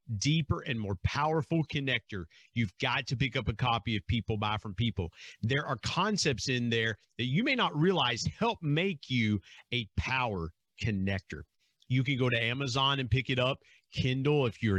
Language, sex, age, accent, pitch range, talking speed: English, male, 40-59, American, 110-150 Hz, 185 wpm